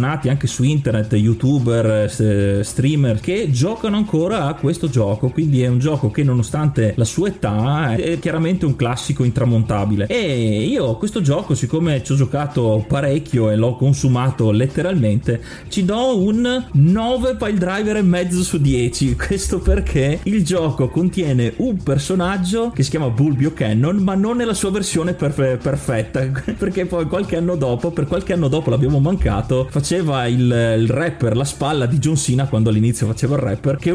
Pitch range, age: 120-160 Hz, 30-49